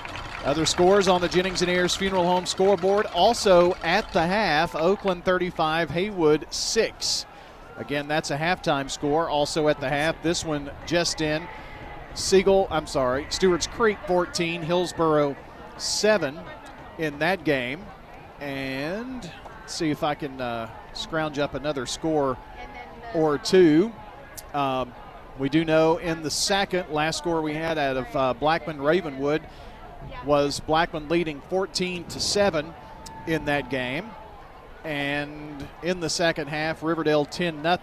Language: English